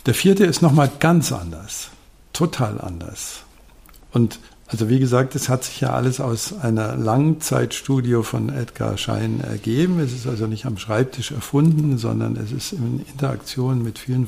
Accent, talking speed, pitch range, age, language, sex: German, 165 wpm, 110-140 Hz, 60-79, German, male